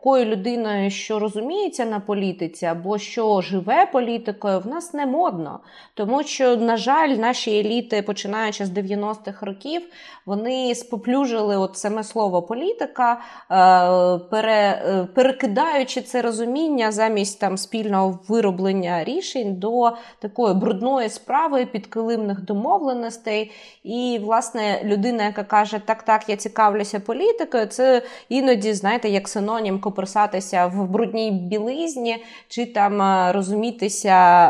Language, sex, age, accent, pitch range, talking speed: Ukrainian, female, 20-39, native, 185-235 Hz, 110 wpm